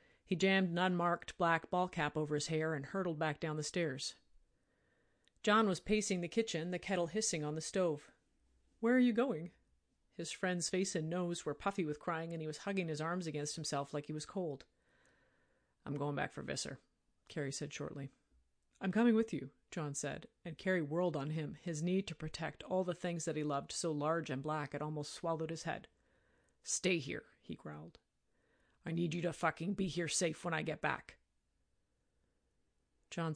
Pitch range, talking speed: 150-180 Hz, 190 wpm